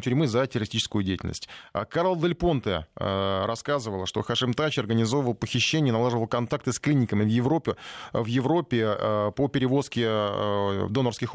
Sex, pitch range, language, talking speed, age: male, 100-130 Hz, Russian, 125 wpm, 20-39